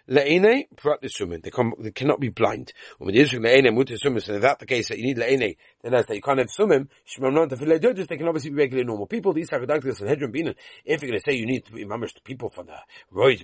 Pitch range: 120-170 Hz